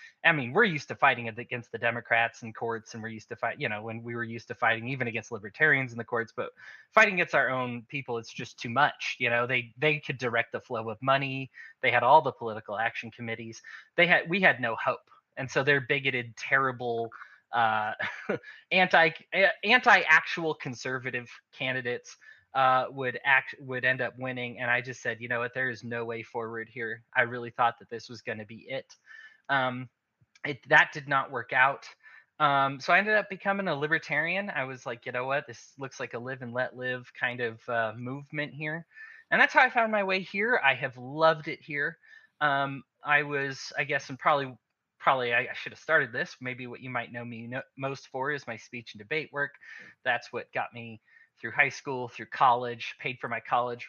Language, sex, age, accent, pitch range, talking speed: English, male, 20-39, American, 120-150 Hz, 215 wpm